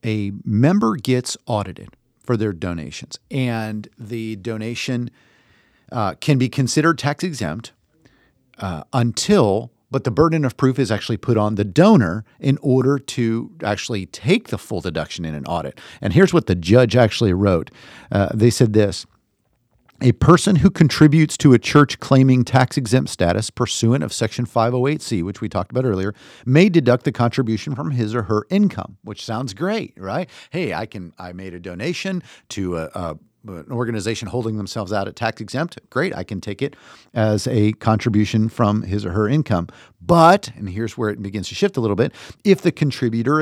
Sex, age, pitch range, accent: male, 50-69, 105-135 Hz, American